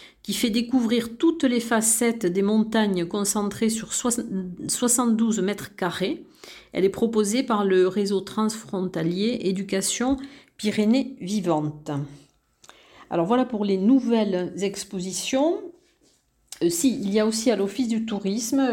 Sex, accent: female, French